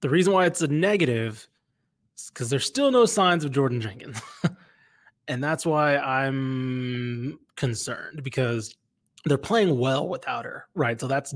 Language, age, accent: English, 20-39, American